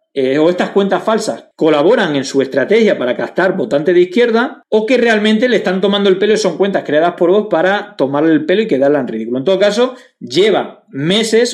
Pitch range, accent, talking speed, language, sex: 145-220 Hz, Spanish, 215 wpm, Spanish, male